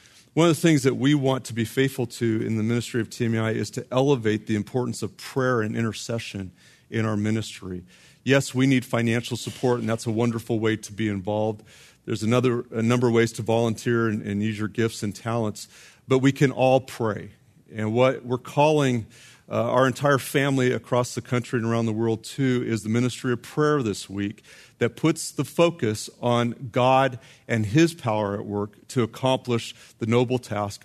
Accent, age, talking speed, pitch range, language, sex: American, 40-59, 195 wpm, 110-135 Hz, English, male